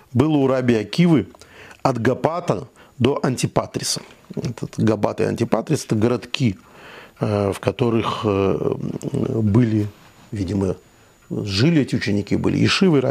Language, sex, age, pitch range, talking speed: Russian, male, 50-69, 115-155 Hz, 105 wpm